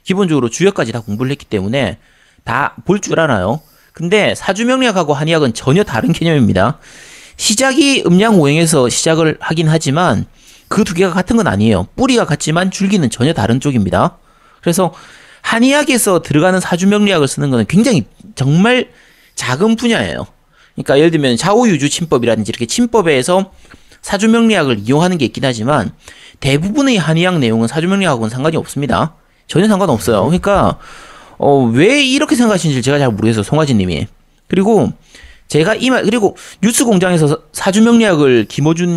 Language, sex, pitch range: Korean, male, 140-210 Hz